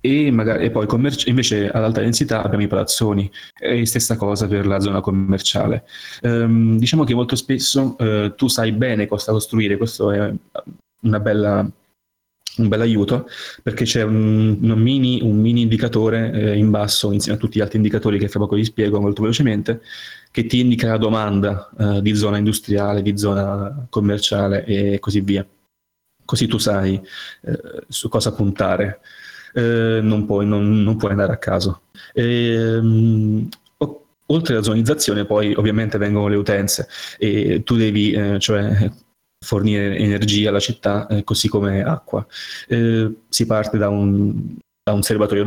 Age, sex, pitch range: 20-39, male, 100-115 Hz